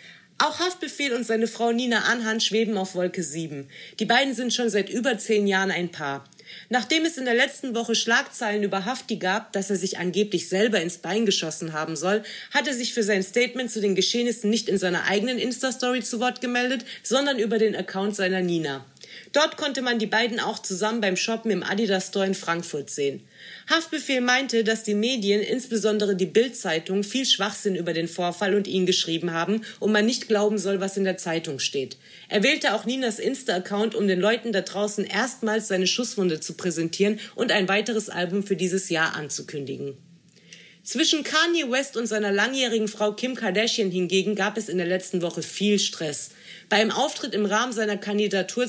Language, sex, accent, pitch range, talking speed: German, female, German, 185-230 Hz, 190 wpm